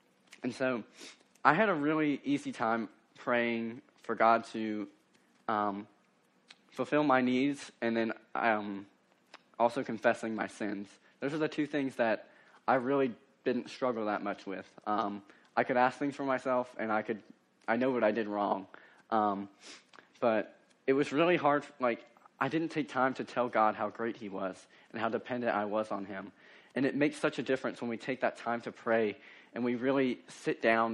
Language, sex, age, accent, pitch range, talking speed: English, male, 20-39, American, 105-130 Hz, 180 wpm